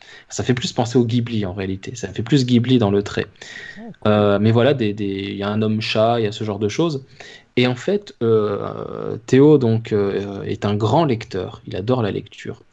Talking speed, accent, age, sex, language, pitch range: 215 wpm, French, 20-39, male, French, 105-130 Hz